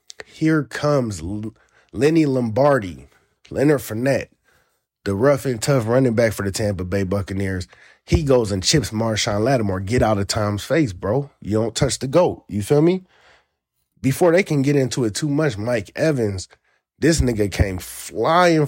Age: 20-39